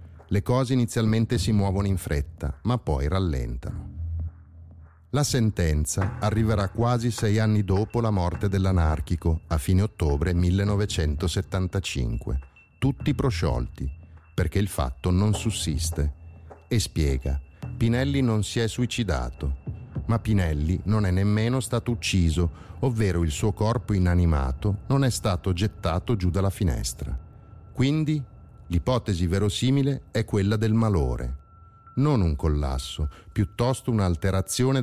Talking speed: 120 wpm